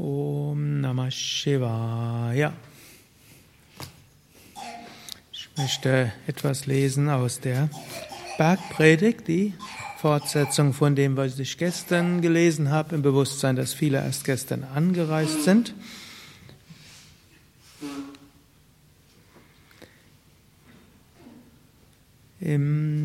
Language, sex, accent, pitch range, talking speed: German, male, German, 135-165 Hz, 75 wpm